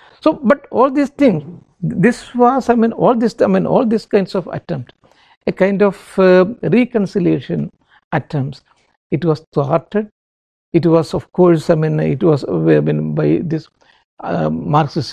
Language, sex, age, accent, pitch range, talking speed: English, male, 60-79, Indian, 165-225 Hz, 165 wpm